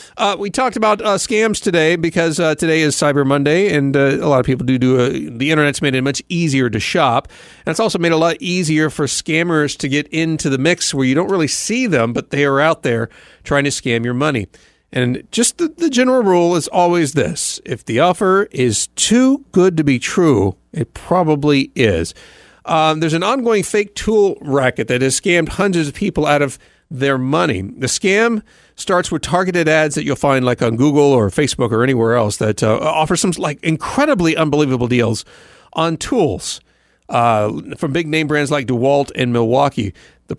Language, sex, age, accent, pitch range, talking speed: English, male, 40-59, American, 130-175 Hz, 200 wpm